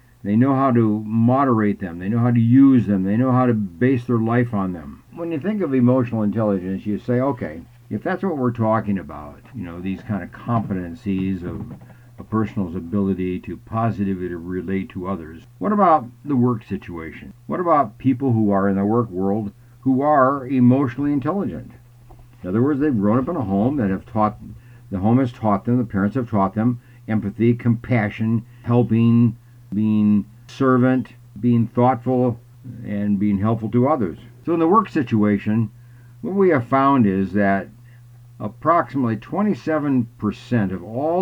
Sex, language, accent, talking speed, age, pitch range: male, English, American, 175 wpm, 60-79, 100-125 Hz